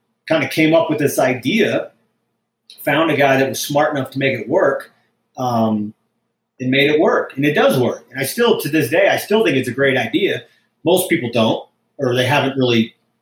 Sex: male